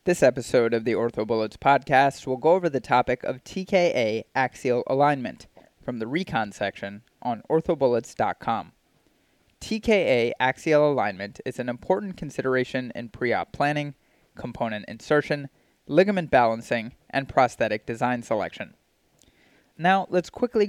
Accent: American